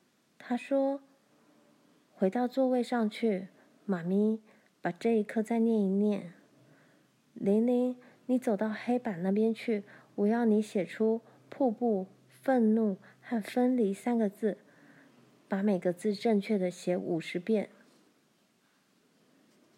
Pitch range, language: 205-260 Hz, Chinese